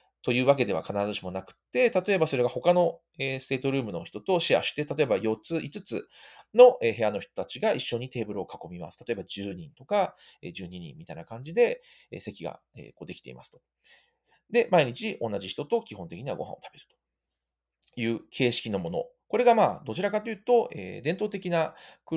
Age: 40-59